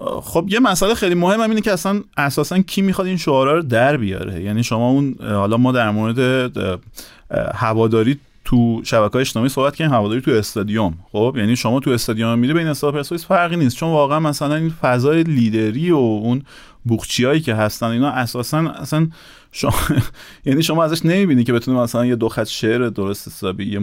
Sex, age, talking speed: male, 30-49, 180 wpm